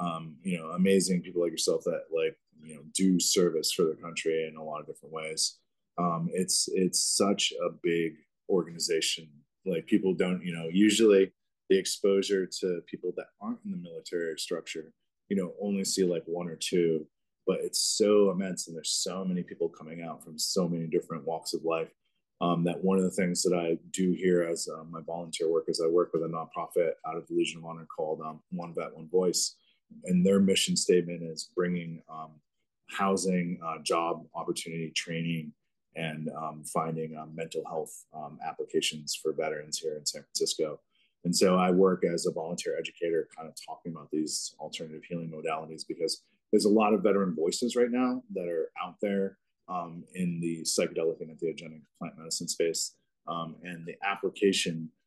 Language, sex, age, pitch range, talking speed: English, male, 20-39, 80-125 Hz, 185 wpm